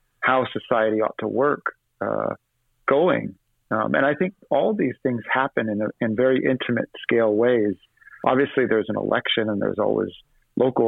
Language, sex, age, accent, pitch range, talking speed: English, male, 40-59, American, 110-130 Hz, 165 wpm